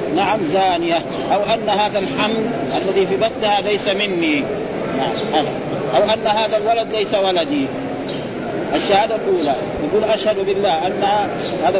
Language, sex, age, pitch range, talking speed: Arabic, male, 40-59, 200-235 Hz, 120 wpm